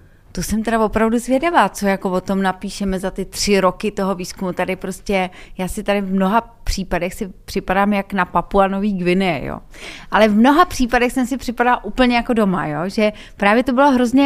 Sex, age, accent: female, 30-49, native